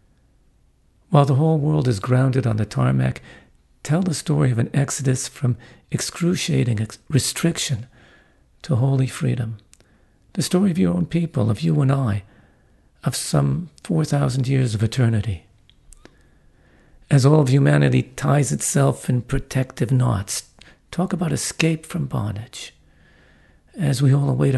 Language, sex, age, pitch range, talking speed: English, male, 50-69, 110-150 Hz, 135 wpm